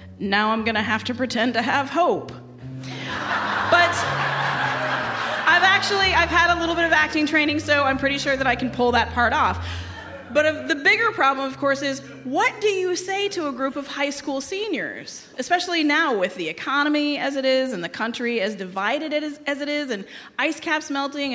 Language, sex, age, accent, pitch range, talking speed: English, female, 30-49, American, 215-300 Hz, 195 wpm